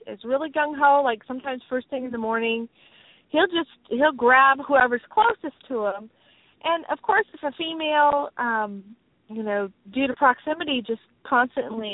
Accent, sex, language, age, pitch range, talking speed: American, female, English, 30-49, 215-295 Hz, 165 wpm